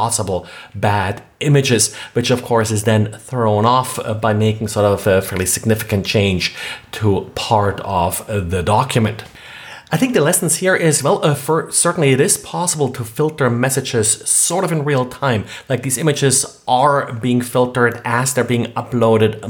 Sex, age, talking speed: male, 30-49, 165 wpm